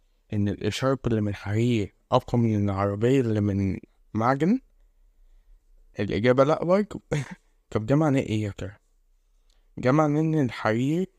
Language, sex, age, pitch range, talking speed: Arabic, male, 20-39, 110-135 Hz, 105 wpm